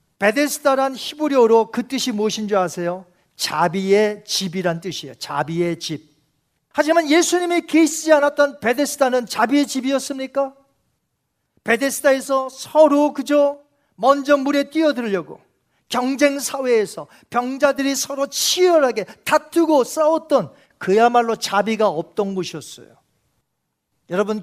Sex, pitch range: male, 210-290 Hz